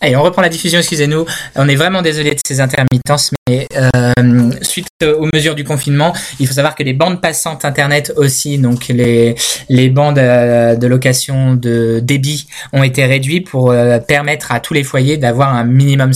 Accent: French